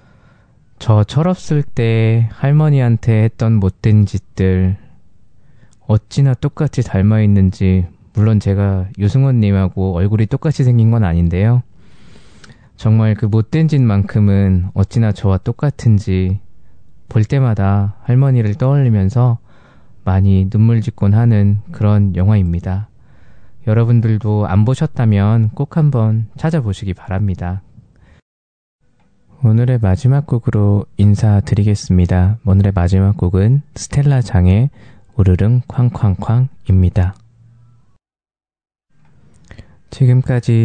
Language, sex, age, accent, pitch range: Korean, male, 20-39, native, 100-120 Hz